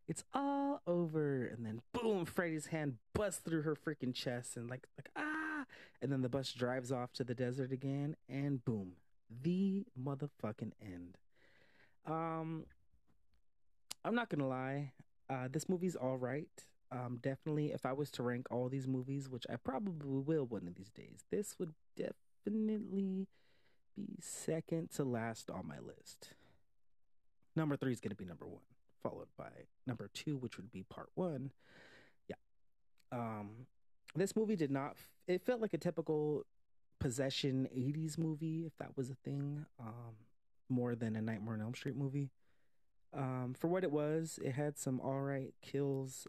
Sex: male